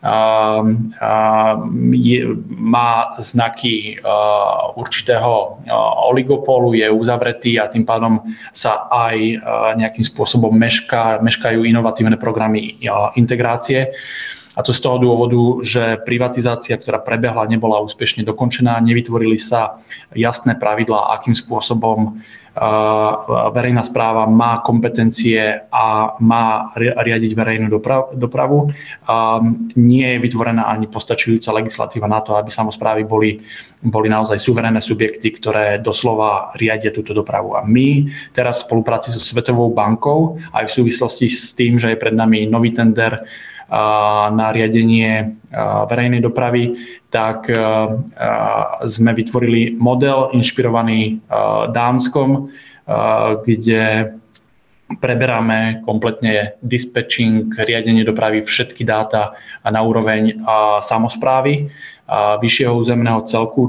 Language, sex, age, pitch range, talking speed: Slovak, male, 20-39, 110-120 Hz, 115 wpm